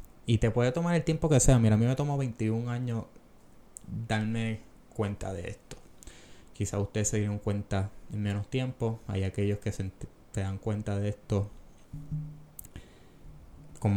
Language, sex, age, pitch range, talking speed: Spanish, male, 20-39, 105-125 Hz, 160 wpm